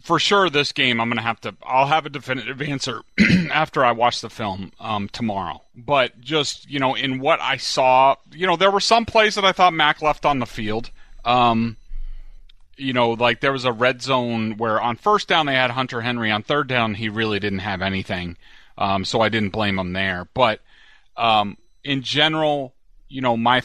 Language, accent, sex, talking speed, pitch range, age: English, American, male, 210 wpm, 100-135 Hz, 30-49